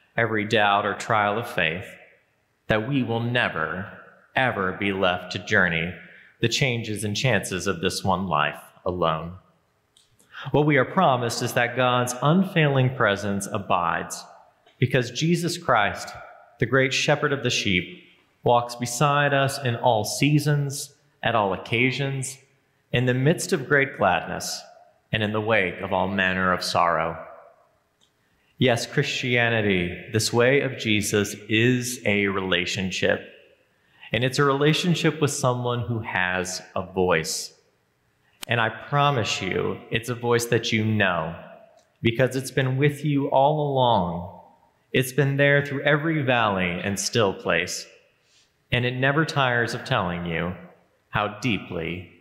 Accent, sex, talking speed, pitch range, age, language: American, male, 140 wpm, 95-135 Hz, 30-49, English